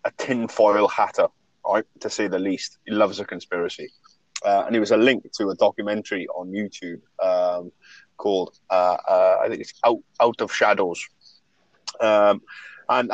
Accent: British